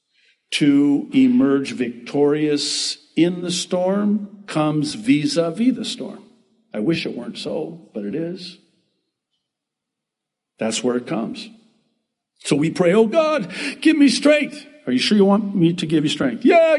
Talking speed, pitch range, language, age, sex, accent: 145 wpm, 170-260 Hz, English, 60-79, male, American